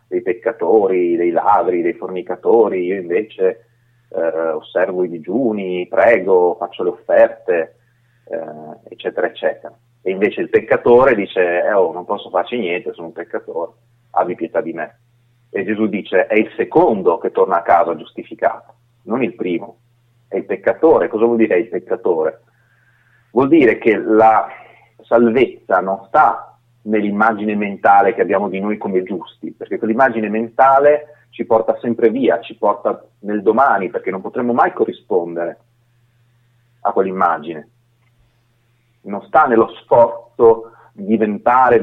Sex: male